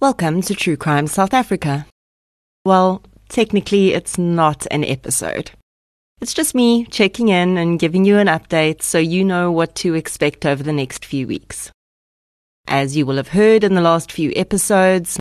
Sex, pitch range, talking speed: female, 150-195 Hz, 170 wpm